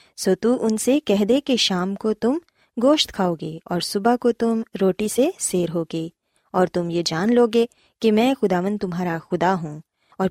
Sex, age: female, 20-39